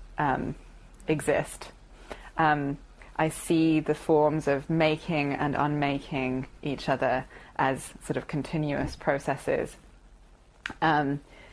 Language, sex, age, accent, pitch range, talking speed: English, female, 20-39, British, 140-165 Hz, 100 wpm